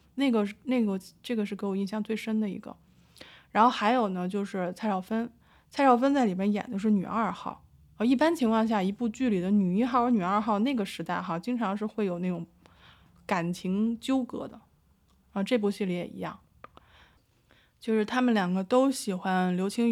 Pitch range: 185-235 Hz